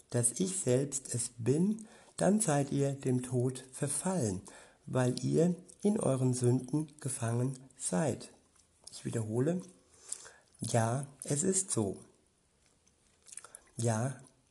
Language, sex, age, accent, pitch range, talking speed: German, male, 60-79, German, 125-150 Hz, 105 wpm